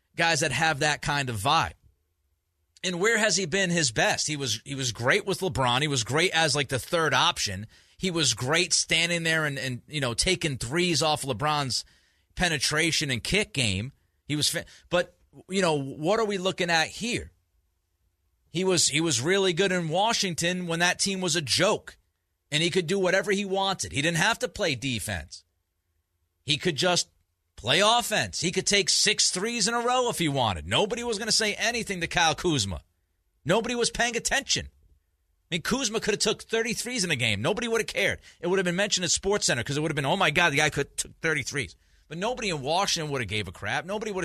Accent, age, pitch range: American, 40-59, 115-195 Hz